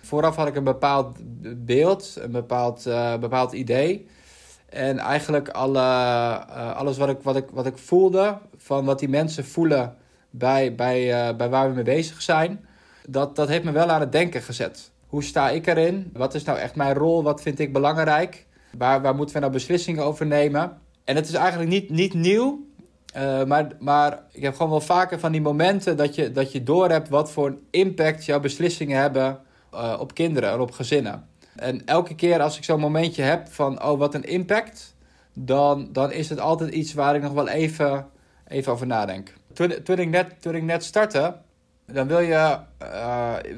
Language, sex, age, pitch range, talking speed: Dutch, male, 20-39, 135-165 Hz, 195 wpm